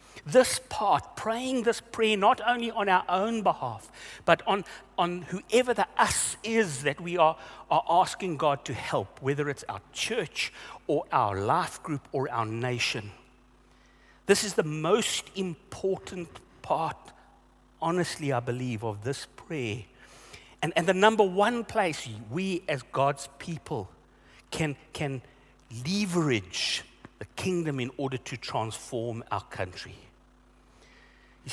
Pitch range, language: 125-190 Hz, English